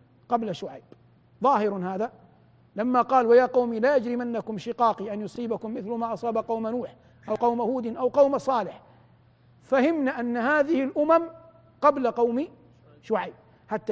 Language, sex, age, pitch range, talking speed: Arabic, male, 50-69, 215-285 Hz, 140 wpm